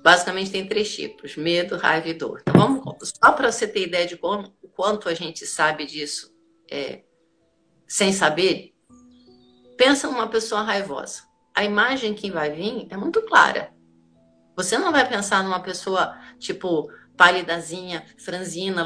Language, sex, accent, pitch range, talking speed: Portuguese, female, Brazilian, 165-225 Hz, 145 wpm